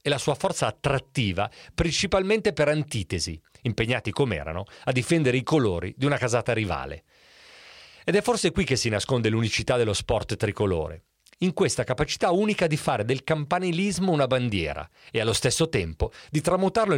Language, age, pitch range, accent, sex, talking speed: Italian, 40-59, 105-160 Hz, native, male, 165 wpm